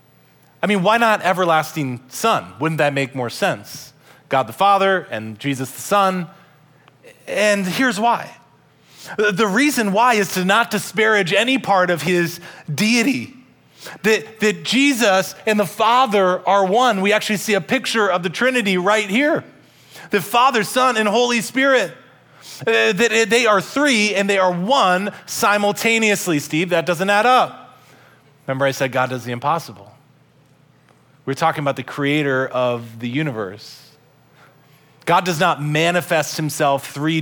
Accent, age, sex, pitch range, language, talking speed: American, 30-49, male, 135-200 Hz, English, 150 wpm